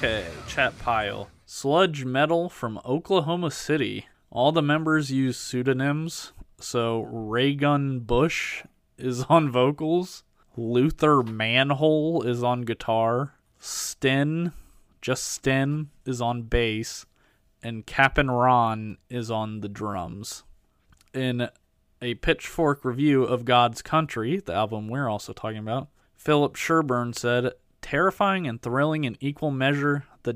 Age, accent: 20-39, American